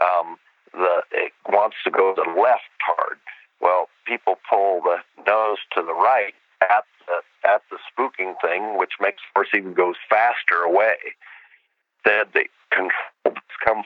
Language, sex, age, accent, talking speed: English, male, 50-69, American, 155 wpm